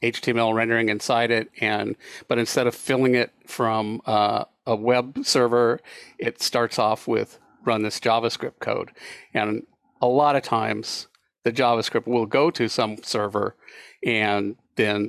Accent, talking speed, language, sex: American, 145 wpm, English, male